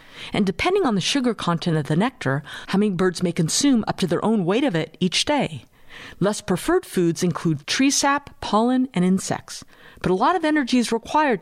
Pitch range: 165-240 Hz